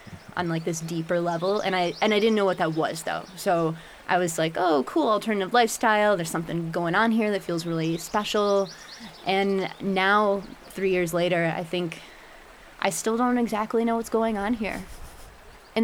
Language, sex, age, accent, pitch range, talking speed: English, female, 20-39, American, 170-205 Hz, 185 wpm